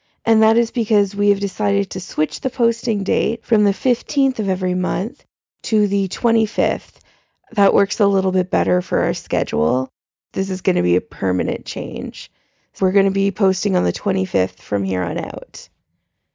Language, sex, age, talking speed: English, female, 20-39, 185 wpm